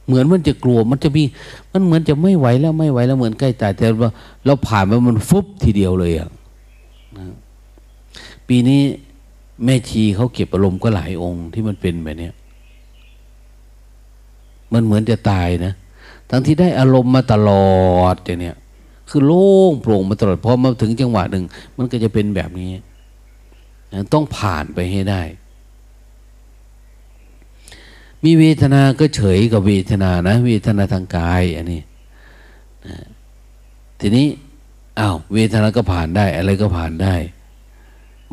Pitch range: 95-120 Hz